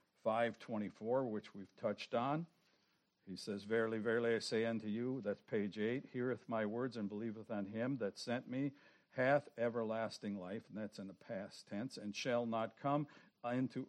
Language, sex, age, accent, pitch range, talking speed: English, male, 60-79, American, 100-120 Hz, 175 wpm